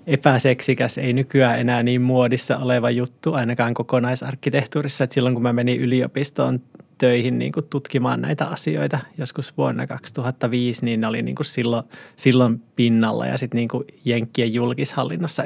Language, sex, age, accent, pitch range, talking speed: Finnish, male, 20-39, native, 120-140 Hz, 140 wpm